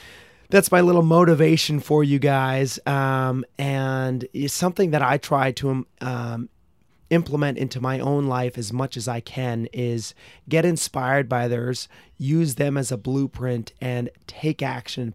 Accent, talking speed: American, 160 wpm